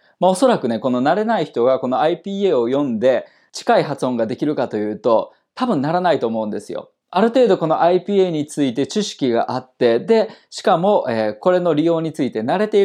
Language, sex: Japanese, male